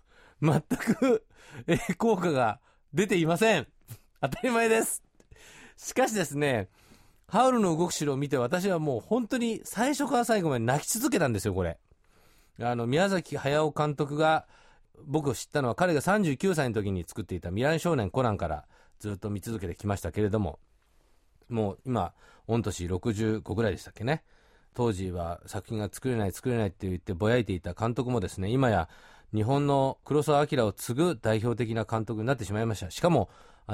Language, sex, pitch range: Japanese, male, 95-145 Hz